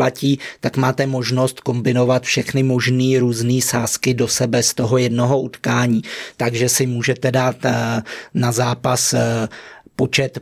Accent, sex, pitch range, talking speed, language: native, male, 125-140 Hz, 120 wpm, Czech